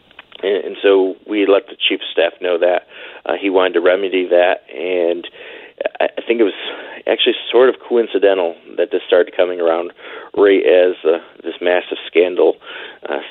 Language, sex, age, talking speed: English, male, 40-59, 160 wpm